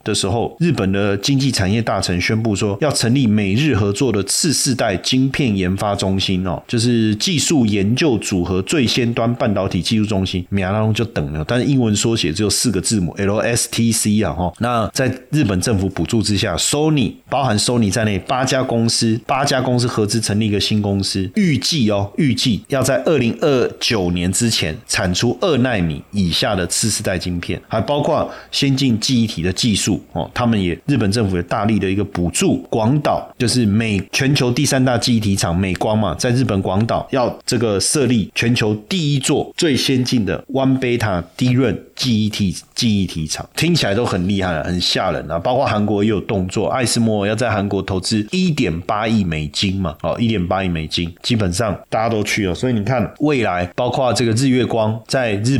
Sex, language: male, Chinese